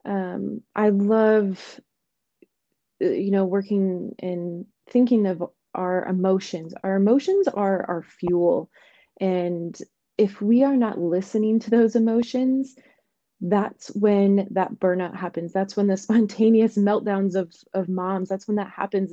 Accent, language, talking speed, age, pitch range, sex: American, English, 130 wpm, 20-39, 190-230 Hz, female